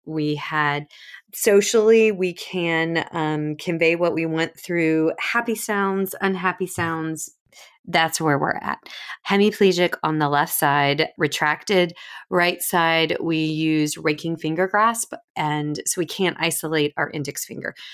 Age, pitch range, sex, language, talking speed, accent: 30-49, 155-195 Hz, female, English, 135 wpm, American